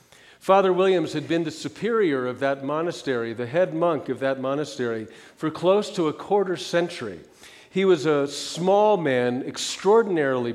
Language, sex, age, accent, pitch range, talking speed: English, male, 50-69, American, 125-175 Hz, 155 wpm